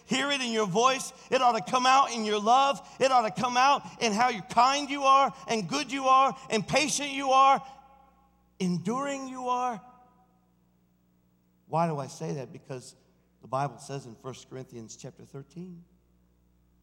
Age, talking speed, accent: 50-69, 170 wpm, American